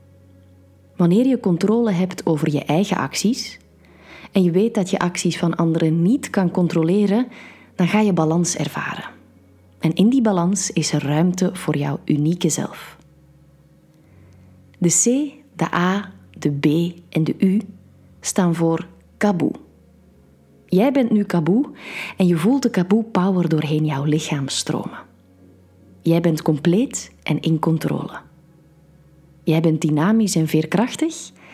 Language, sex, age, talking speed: Dutch, female, 30-49, 135 wpm